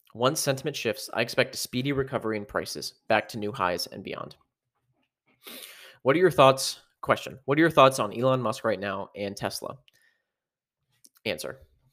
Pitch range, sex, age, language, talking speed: 110-135 Hz, male, 30-49, English, 165 wpm